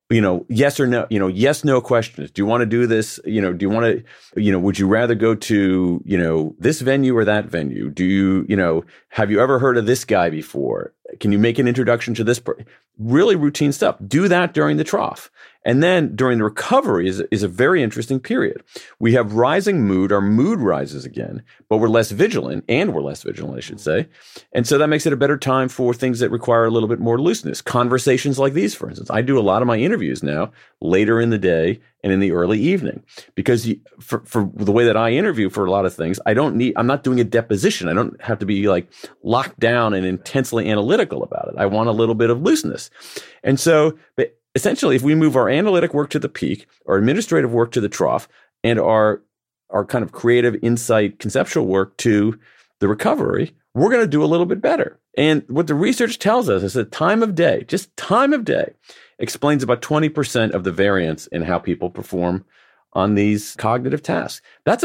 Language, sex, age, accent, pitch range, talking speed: English, male, 40-59, American, 105-135 Hz, 225 wpm